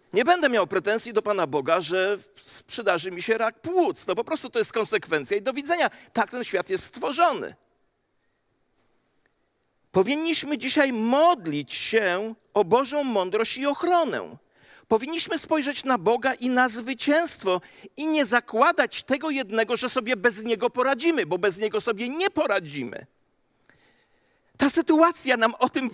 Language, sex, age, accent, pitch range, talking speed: Polish, male, 40-59, native, 210-300 Hz, 150 wpm